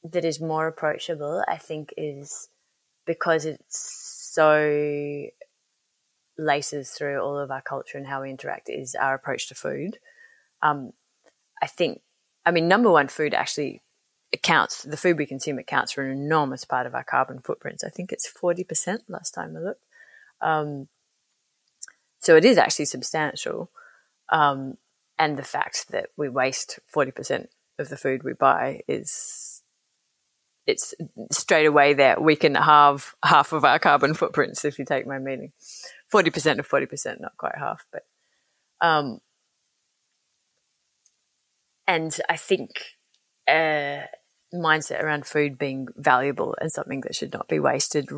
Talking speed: 145 wpm